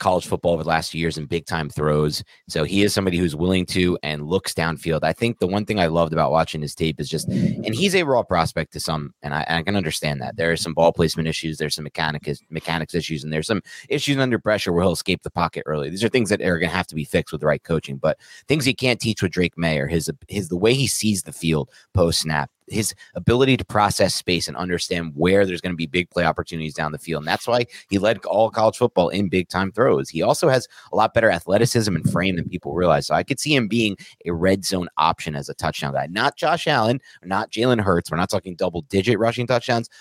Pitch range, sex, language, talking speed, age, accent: 80-105 Hz, male, English, 260 wpm, 30-49, American